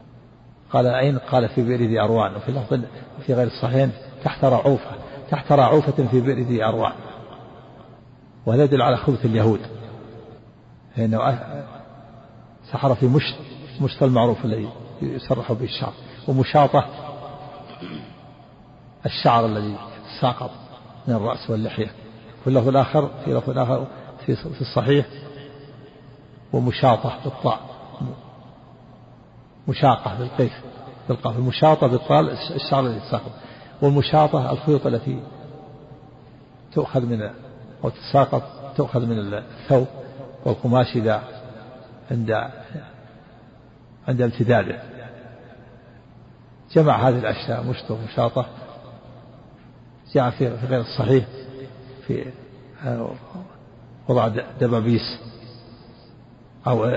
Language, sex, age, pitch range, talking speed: Arabic, male, 50-69, 115-135 Hz, 90 wpm